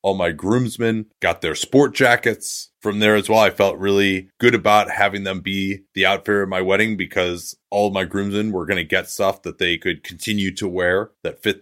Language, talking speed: English, 215 wpm